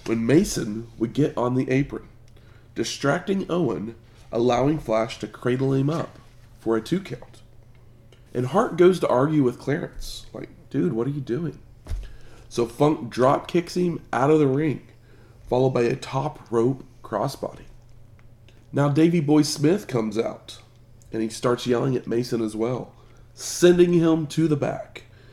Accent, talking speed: American, 155 wpm